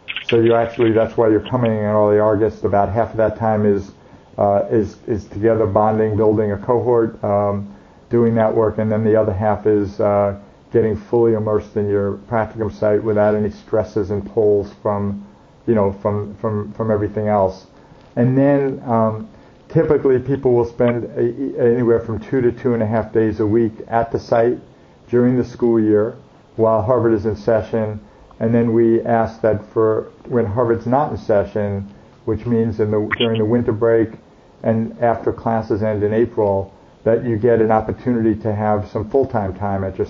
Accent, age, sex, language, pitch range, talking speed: American, 50-69, male, English, 105-115 Hz, 185 wpm